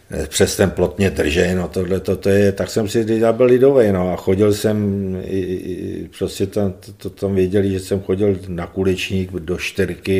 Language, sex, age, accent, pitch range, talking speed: Czech, male, 50-69, native, 90-100 Hz, 175 wpm